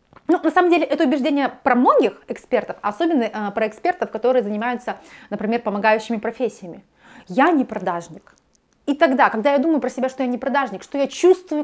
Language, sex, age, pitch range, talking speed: Russian, female, 30-49, 220-280 Hz, 180 wpm